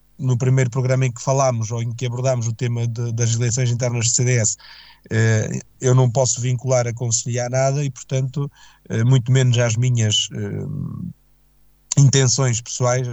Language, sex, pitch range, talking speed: Portuguese, male, 120-140 Hz, 165 wpm